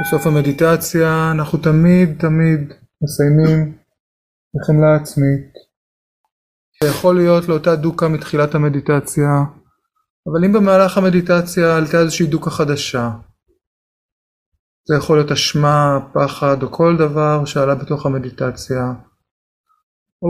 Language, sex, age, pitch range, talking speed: Hebrew, male, 30-49, 125-165 Hz, 100 wpm